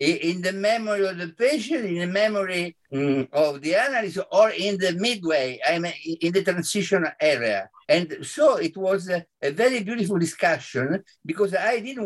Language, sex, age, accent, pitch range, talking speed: English, male, 50-69, Italian, 145-200 Hz, 175 wpm